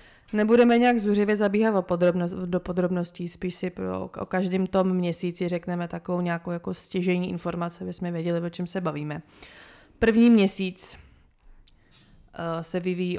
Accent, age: native, 20-39